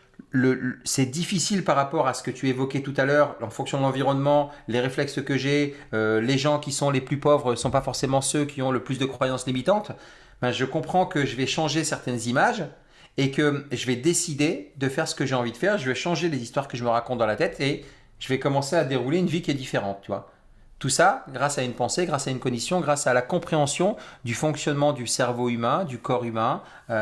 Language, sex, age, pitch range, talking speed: French, male, 40-59, 120-150 Hz, 250 wpm